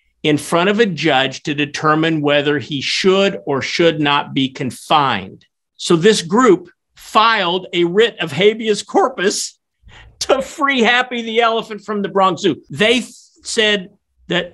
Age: 50-69